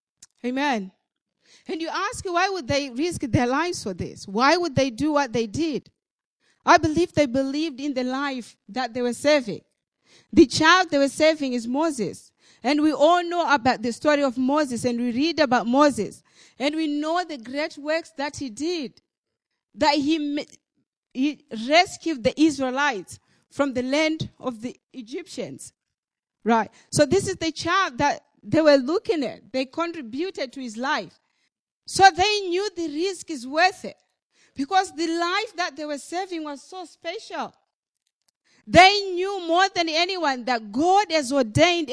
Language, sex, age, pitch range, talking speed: English, female, 40-59, 280-360 Hz, 165 wpm